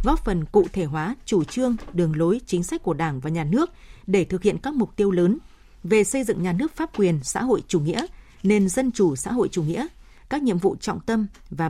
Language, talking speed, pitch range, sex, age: Vietnamese, 240 wpm, 175-230 Hz, female, 20-39